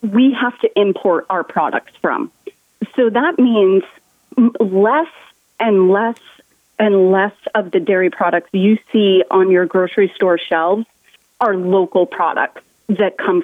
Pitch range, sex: 190-240 Hz, female